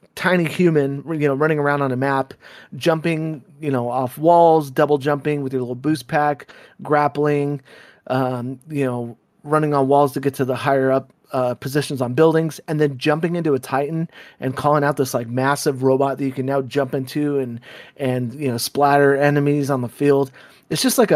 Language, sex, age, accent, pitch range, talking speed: English, male, 30-49, American, 130-150 Hz, 195 wpm